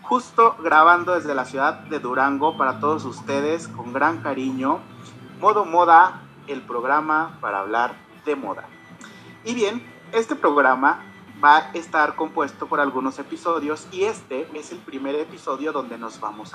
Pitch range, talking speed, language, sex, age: 135-165 Hz, 150 wpm, Spanish, male, 30-49